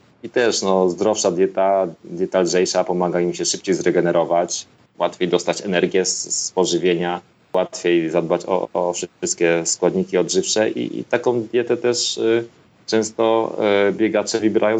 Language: Polish